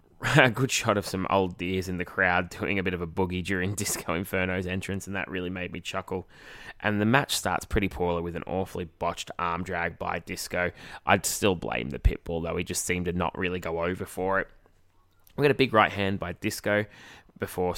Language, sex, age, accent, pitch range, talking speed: English, male, 20-39, Australian, 90-120 Hz, 225 wpm